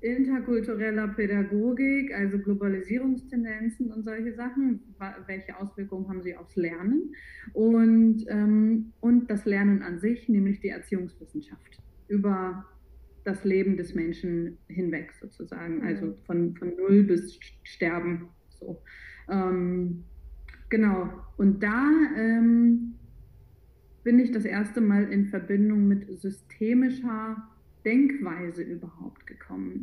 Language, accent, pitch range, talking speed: German, German, 185-225 Hz, 110 wpm